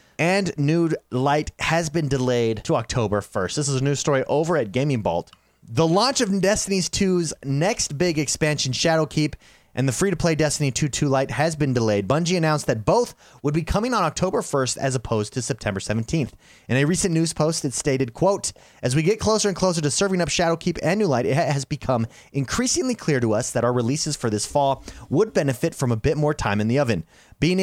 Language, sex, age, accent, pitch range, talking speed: English, male, 30-49, American, 125-170 Hz, 210 wpm